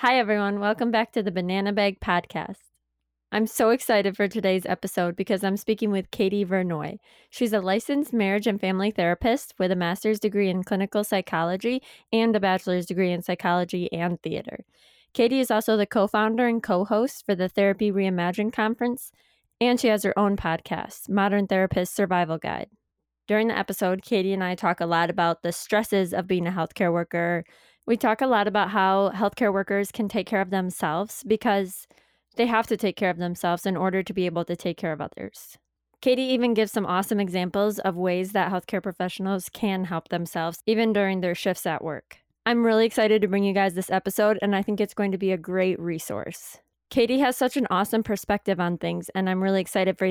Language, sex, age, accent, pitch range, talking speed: English, female, 20-39, American, 185-215 Hz, 200 wpm